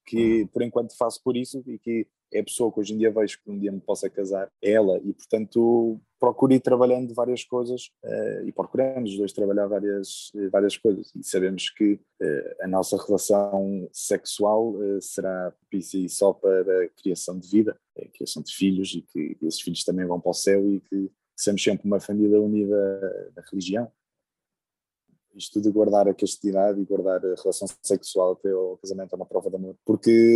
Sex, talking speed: male, 185 wpm